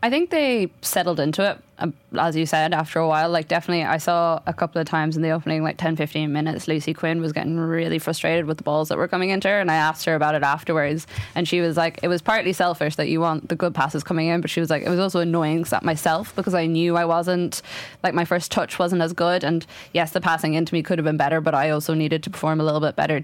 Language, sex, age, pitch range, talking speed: English, female, 10-29, 155-175 Hz, 270 wpm